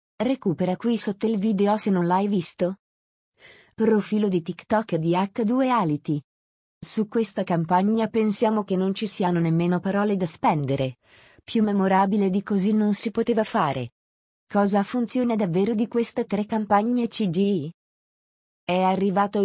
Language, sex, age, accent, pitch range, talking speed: Italian, female, 30-49, native, 180-225 Hz, 140 wpm